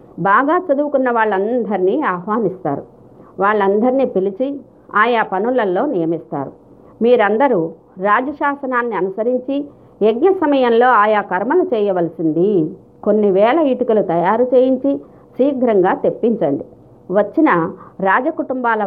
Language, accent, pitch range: Telugu, native, 195-255 Hz